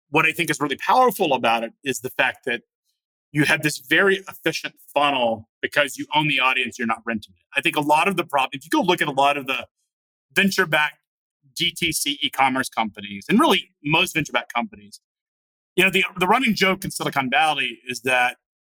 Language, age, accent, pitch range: English, 30-49, American, 130-170 Hz